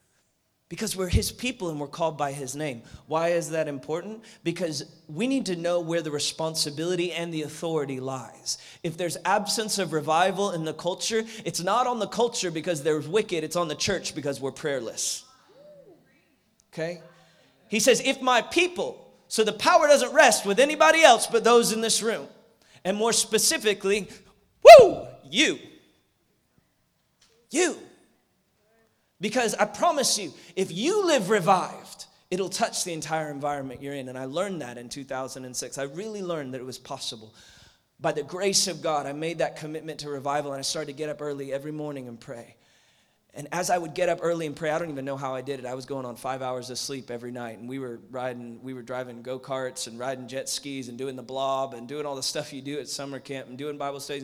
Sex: male